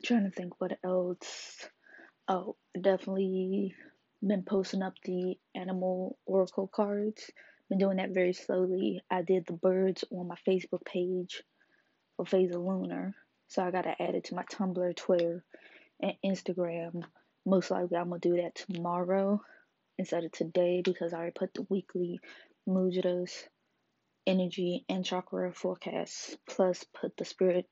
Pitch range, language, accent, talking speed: 175-190 Hz, English, American, 145 wpm